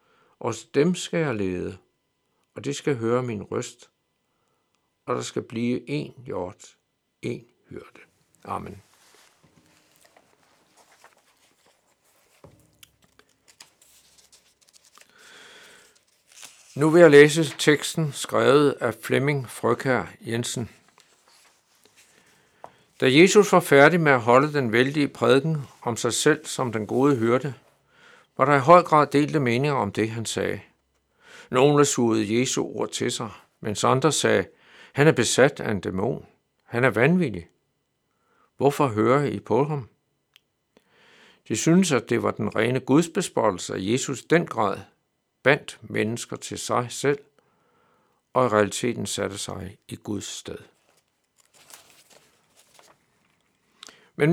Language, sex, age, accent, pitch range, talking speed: Danish, male, 60-79, native, 115-150 Hz, 120 wpm